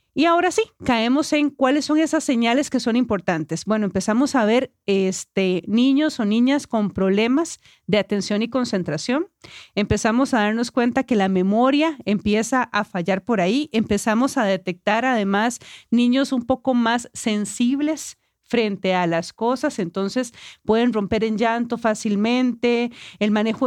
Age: 40-59